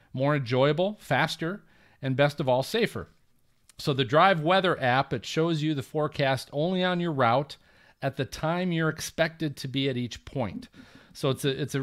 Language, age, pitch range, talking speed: English, 40-59, 130-155 Hz, 185 wpm